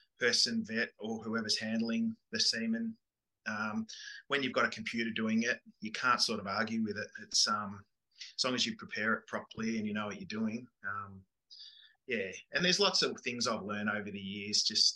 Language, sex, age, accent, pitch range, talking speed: English, male, 20-39, Australian, 105-130 Hz, 200 wpm